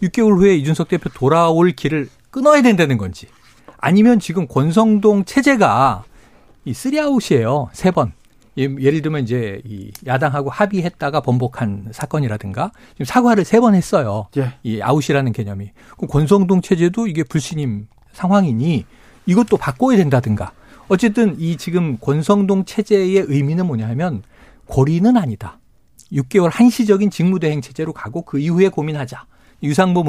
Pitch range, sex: 135-200 Hz, male